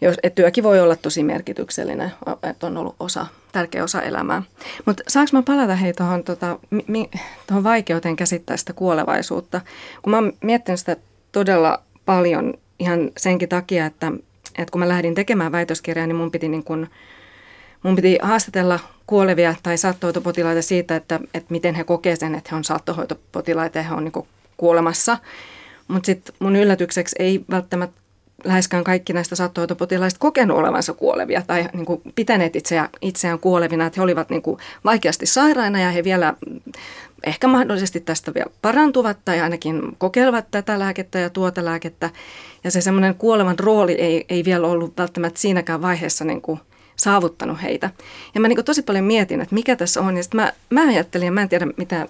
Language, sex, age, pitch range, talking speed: Finnish, female, 30-49, 170-200 Hz, 165 wpm